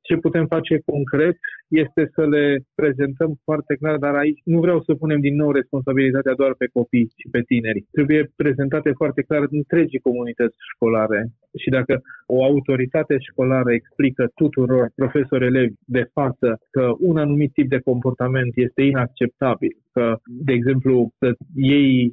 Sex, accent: male, native